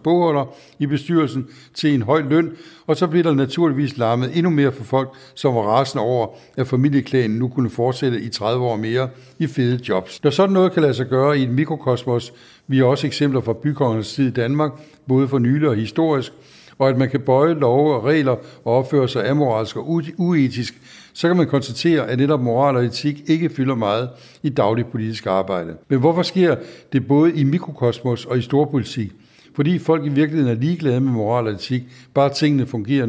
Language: Danish